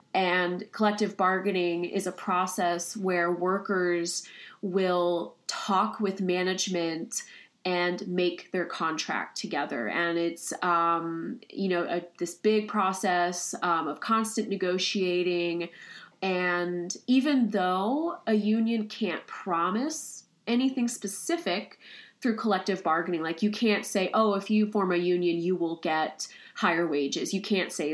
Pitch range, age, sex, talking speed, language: 170-205 Hz, 20-39, female, 125 wpm, English